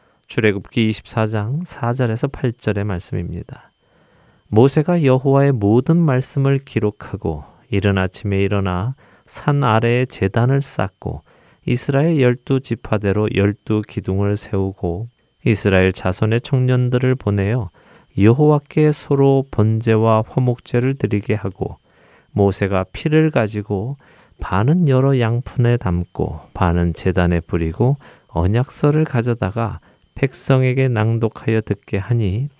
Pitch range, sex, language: 100-130 Hz, male, Korean